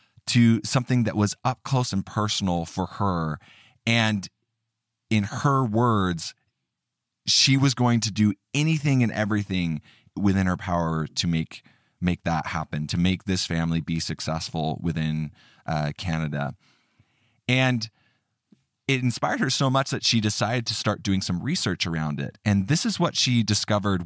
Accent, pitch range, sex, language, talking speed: American, 90-120 Hz, male, English, 150 wpm